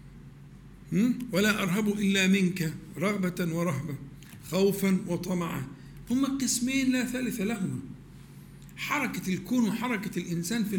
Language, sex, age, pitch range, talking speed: Arabic, male, 50-69, 175-245 Hz, 100 wpm